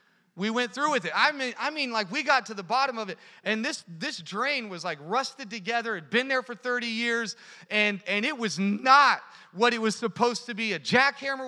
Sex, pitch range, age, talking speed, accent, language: male, 190-240 Hz, 30-49, 235 wpm, American, English